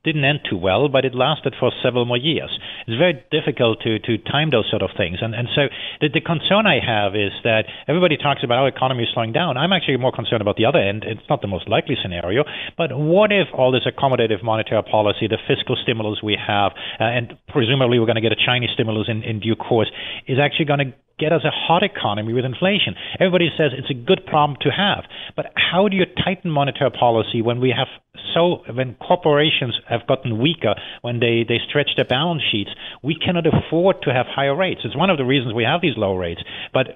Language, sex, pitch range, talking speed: English, male, 115-155 Hz, 225 wpm